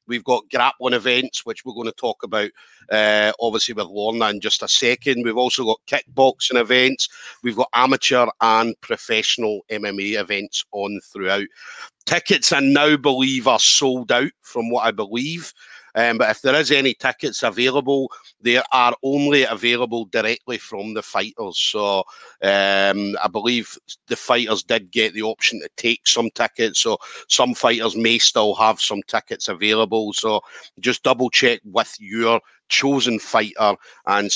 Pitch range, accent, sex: 110-135 Hz, British, male